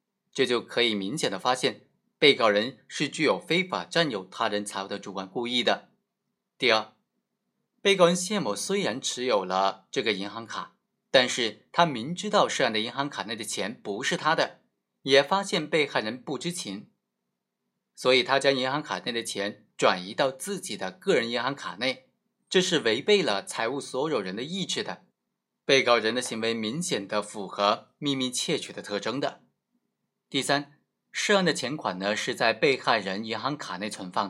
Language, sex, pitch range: Chinese, male, 120-195 Hz